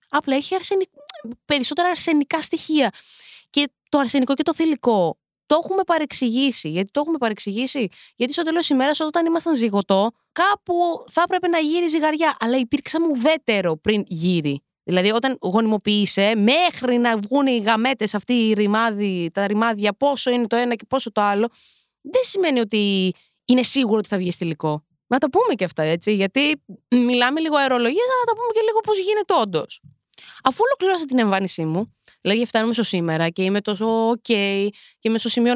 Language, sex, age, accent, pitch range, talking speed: Greek, female, 20-39, native, 215-305 Hz, 170 wpm